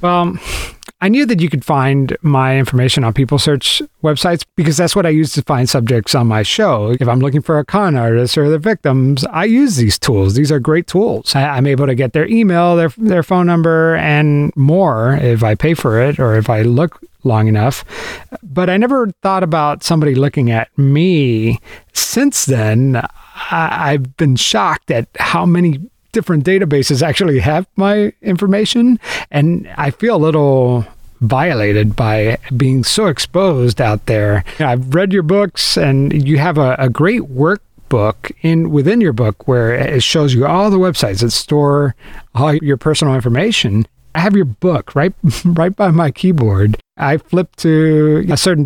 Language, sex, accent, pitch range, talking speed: English, male, American, 130-175 Hz, 180 wpm